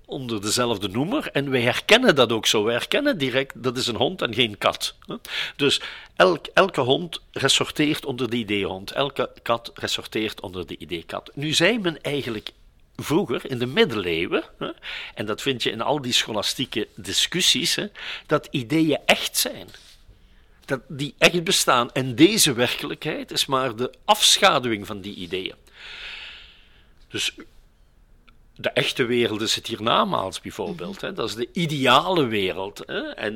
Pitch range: 115-150 Hz